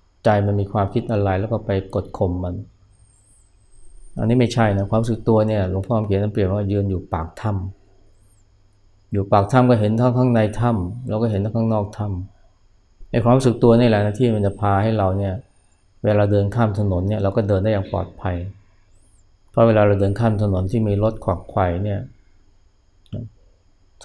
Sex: male